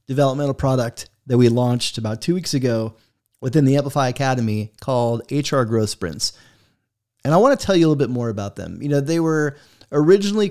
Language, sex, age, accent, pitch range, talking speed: English, male, 30-49, American, 120-155 Hz, 195 wpm